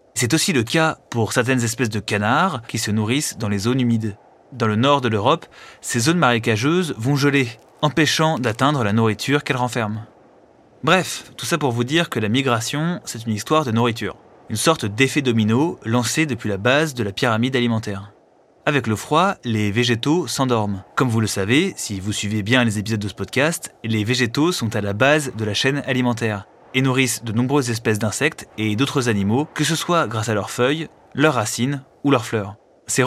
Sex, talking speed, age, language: male, 200 wpm, 20-39, French